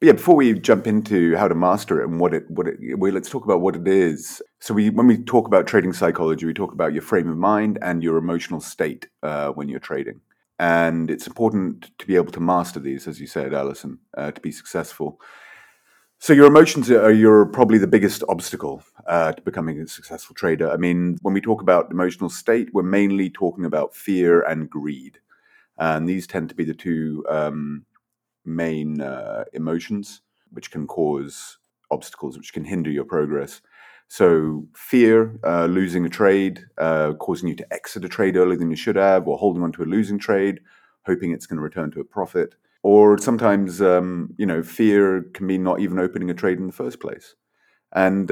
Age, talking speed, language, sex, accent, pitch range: 30-49, 200 wpm, English, male, British, 80-105 Hz